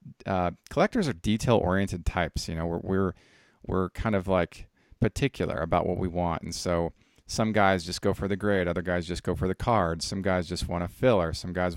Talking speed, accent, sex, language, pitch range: 220 wpm, American, male, English, 85-105 Hz